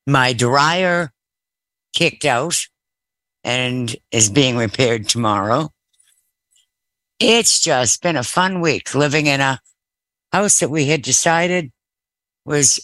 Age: 60-79